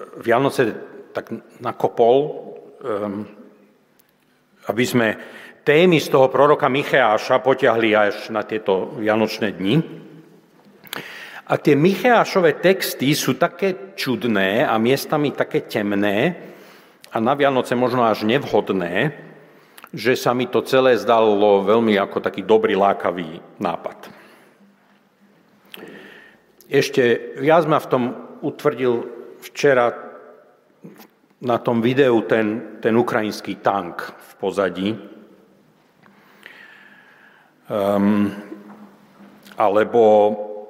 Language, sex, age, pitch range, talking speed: Slovak, male, 50-69, 105-170 Hz, 95 wpm